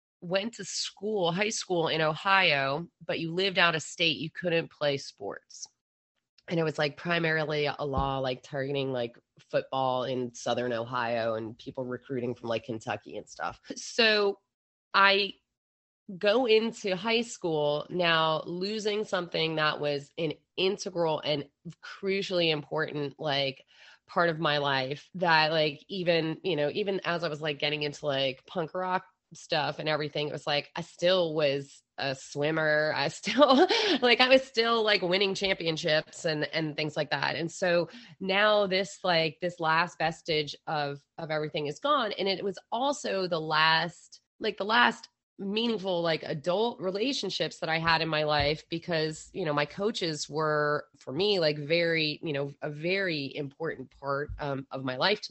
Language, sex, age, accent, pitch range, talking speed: English, female, 30-49, American, 150-190 Hz, 165 wpm